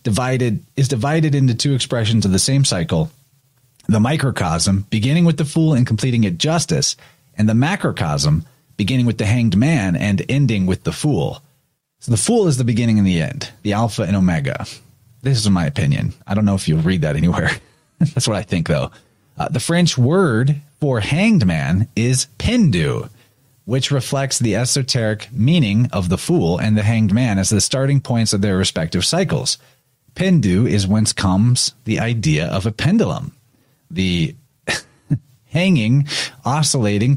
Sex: male